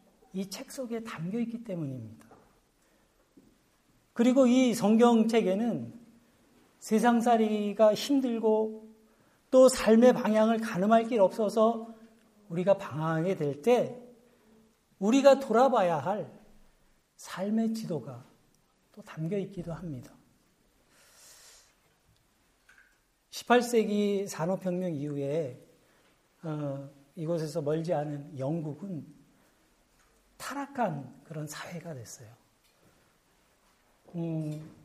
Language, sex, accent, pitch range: Korean, male, native, 155-225 Hz